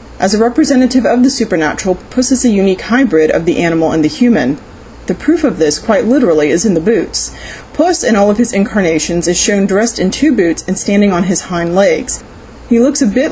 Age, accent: 30-49, American